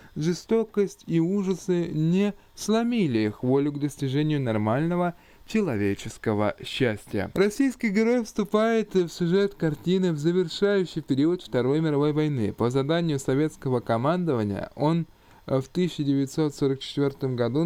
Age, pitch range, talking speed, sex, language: 20-39, 135-190 Hz, 110 wpm, male, Russian